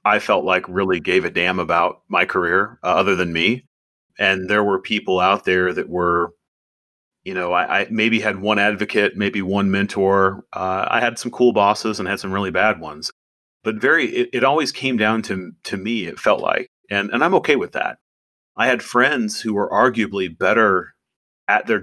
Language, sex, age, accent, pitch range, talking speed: English, male, 30-49, American, 85-105 Hz, 200 wpm